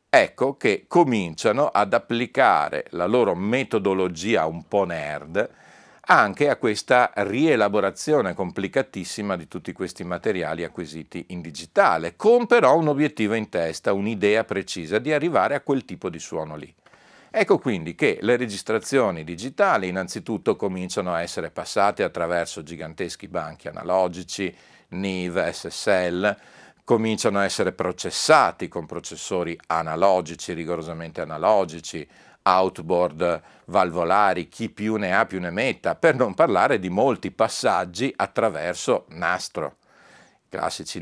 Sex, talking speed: male, 120 wpm